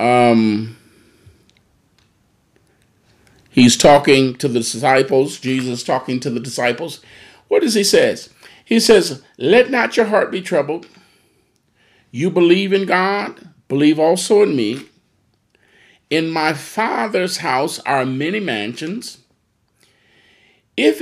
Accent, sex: American, male